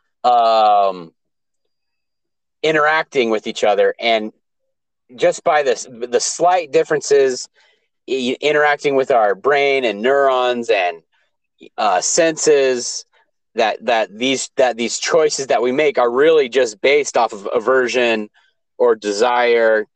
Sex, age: male, 30-49